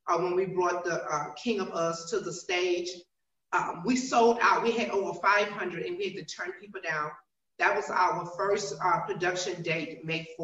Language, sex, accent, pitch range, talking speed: English, female, American, 170-220 Hz, 200 wpm